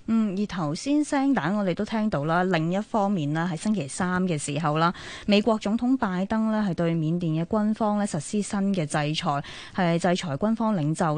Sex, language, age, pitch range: female, Chinese, 20-39, 150-210 Hz